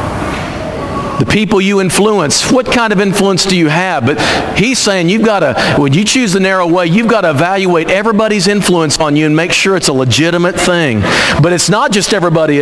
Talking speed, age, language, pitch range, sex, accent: 205 wpm, 50-69, English, 155-200 Hz, male, American